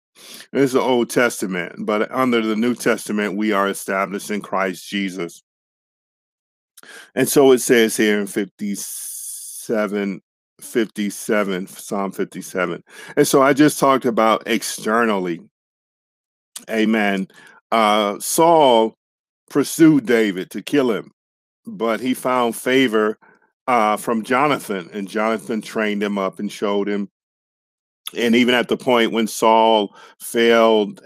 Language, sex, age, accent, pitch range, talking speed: English, male, 50-69, American, 95-115 Hz, 120 wpm